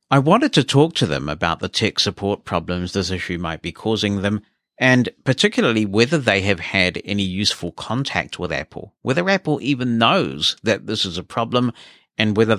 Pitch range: 95-120 Hz